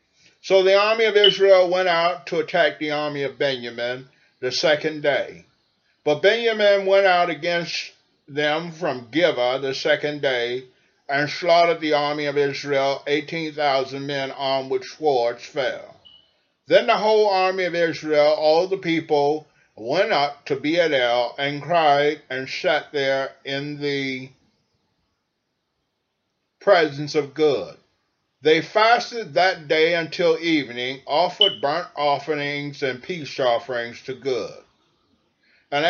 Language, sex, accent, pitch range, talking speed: English, male, American, 135-175 Hz, 130 wpm